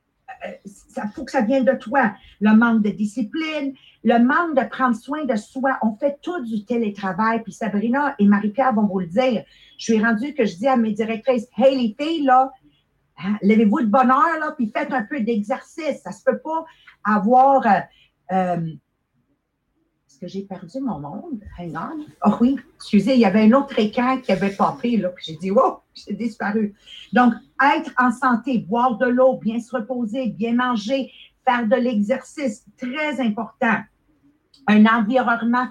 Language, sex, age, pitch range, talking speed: English, female, 50-69, 210-260 Hz, 180 wpm